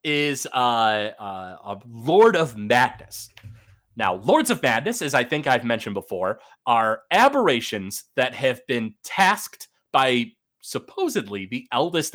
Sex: male